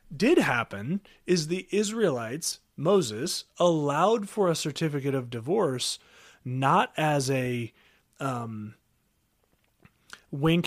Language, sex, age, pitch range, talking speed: English, male, 30-49, 140-195 Hz, 95 wpm